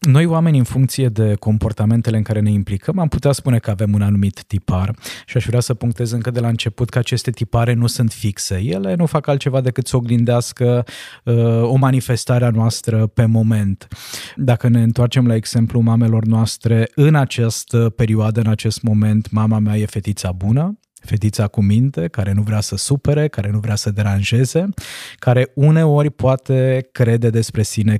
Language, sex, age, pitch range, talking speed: Romanian, male, 20-39, 110-135 Hz, 180 wpm